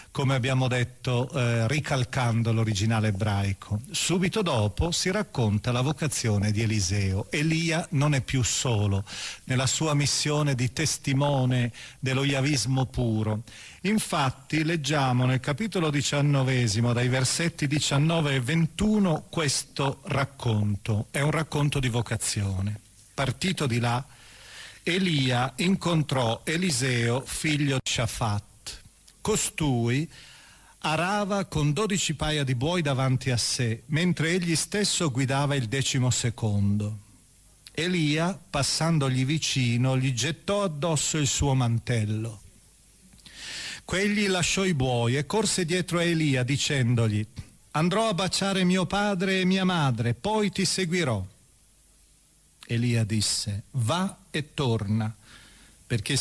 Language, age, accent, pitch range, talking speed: Italian, 40-59, native, 115-160 Hz, 115 wpm